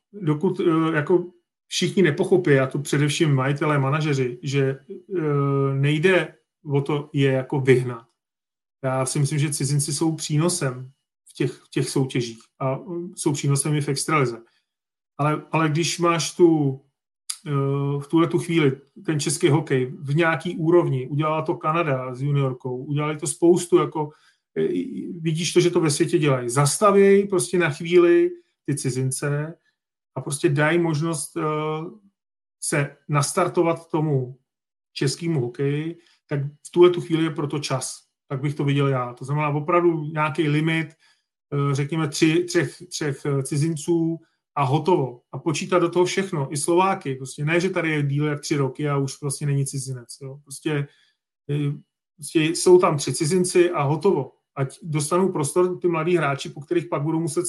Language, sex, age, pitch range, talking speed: Czech, male, 30-49, 140-170 Hz, 150 wpm